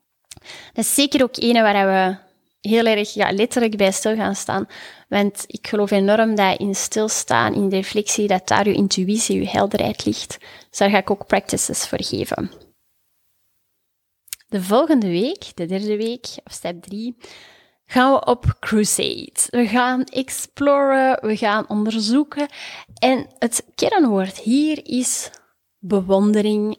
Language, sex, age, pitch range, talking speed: Dutch, female, 20-39, 200-255 Hz, 145 wpm